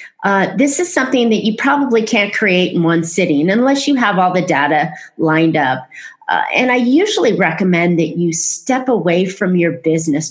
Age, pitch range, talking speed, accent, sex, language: 30-49, 170-245 Hz, 185 wpm, American, female, English